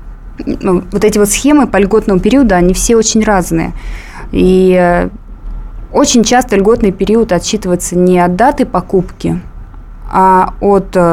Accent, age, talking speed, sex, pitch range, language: native, 20-39, 125 wpm, female, 165-200 Hz, Russian